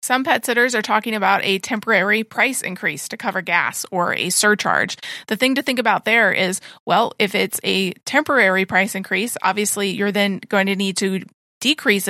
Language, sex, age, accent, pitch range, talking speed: English, female, 30-49, American, 190-225 Hz, 190 wpm